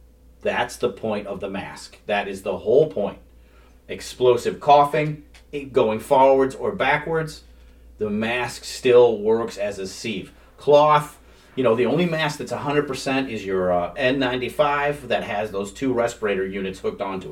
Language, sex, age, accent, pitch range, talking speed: English, male, 40-59, American, 110-155 Hz, 150 wpm